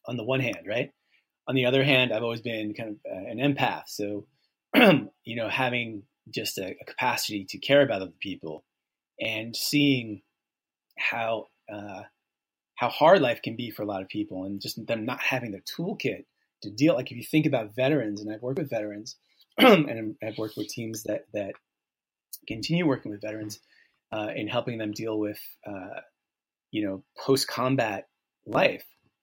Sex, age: male, 30-49